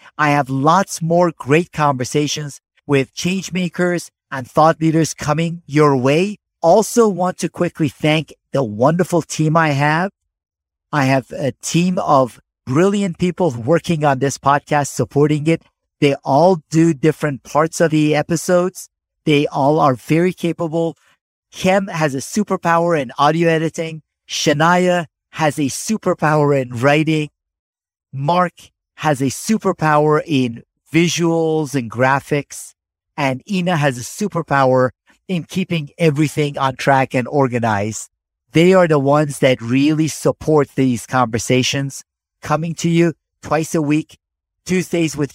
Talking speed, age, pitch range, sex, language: 130 wpm, 50-69, 140-170 Hz, male, English